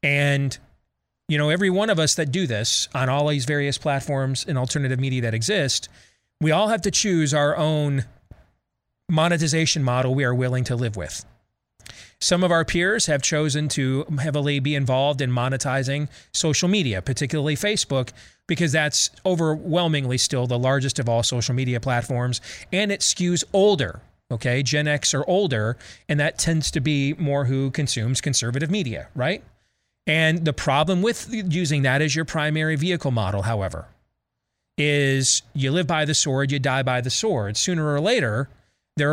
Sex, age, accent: male, 30-49, American